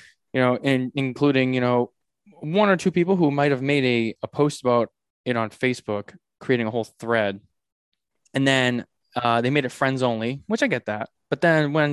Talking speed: 200 wpm